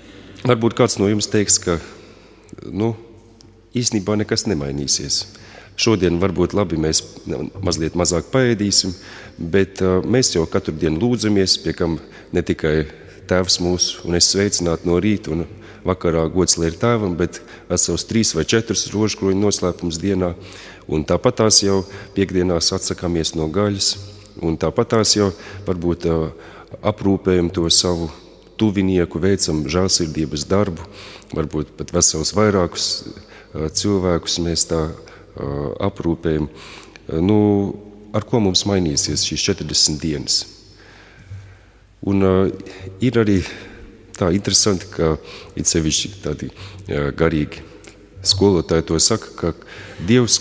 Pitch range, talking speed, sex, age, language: 85-105 Hz, 110 wpm, male, 40-59, English